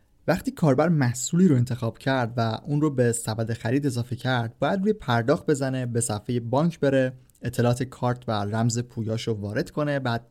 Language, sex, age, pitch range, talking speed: Persian, male, 20-39, 120-145 Hz, 175 wpm